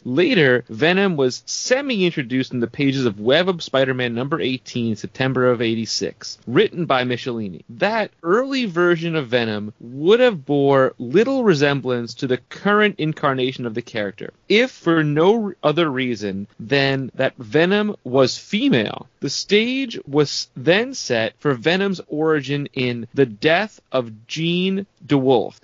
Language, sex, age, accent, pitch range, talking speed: English, male, 30-49, American, 125-165 Hz, 140 wpm